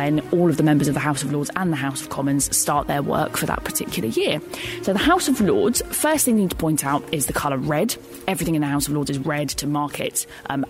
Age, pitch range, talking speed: 20-39, 150-190 Hz, 280 wpm